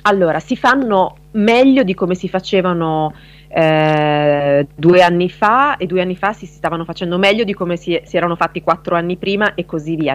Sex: female